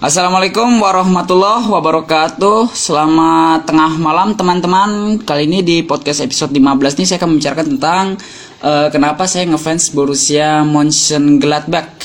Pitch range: 125-160 Hz